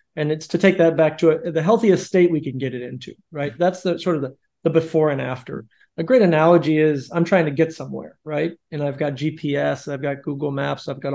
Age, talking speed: 40-59, 250 wpm